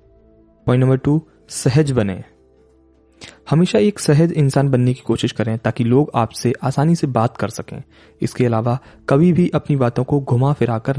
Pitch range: 110-150 Hz